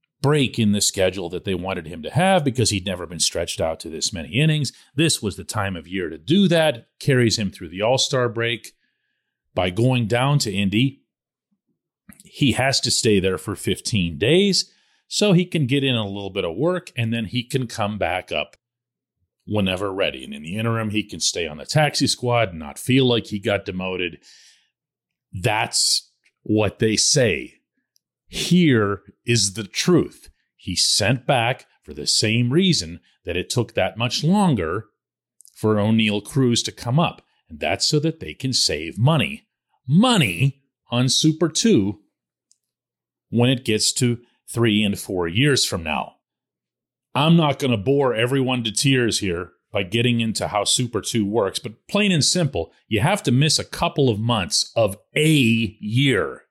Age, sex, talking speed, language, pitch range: 40-59, male, 175 wpm, English, 105-145 Hz